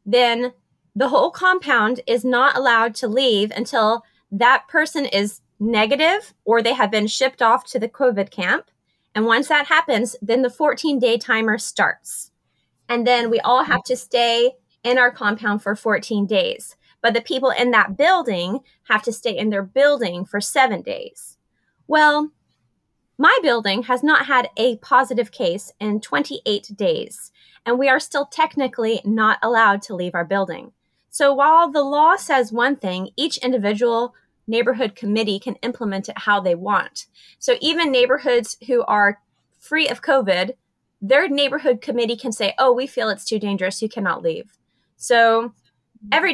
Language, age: English, 20-39